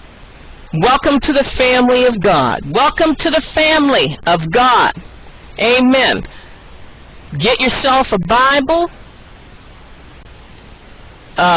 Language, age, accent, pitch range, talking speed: English, 50-69, American, 200-280 Hz, 95 wpm